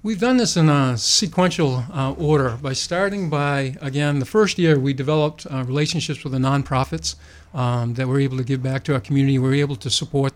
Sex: male